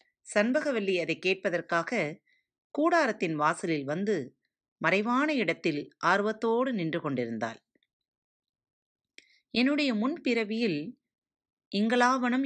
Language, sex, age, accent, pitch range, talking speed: Tamil, female, 30-49, native, 165-230 Hz, 70 wpm